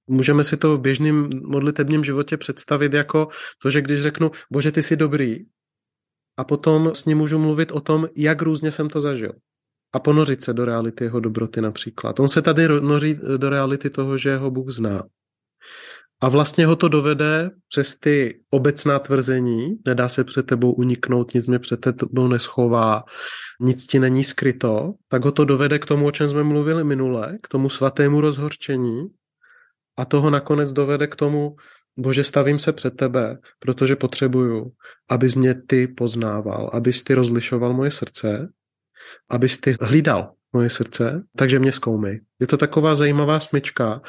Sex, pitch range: male, 125-150 Hz